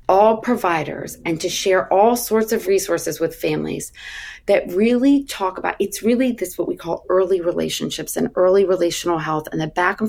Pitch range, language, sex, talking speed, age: 170-210 Hz, English, female, 185 wpm, 30-49